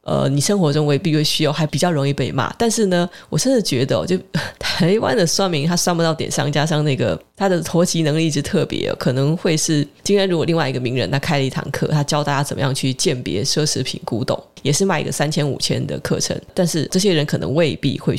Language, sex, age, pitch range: Chinese, female, 20-39, 140-180 Hz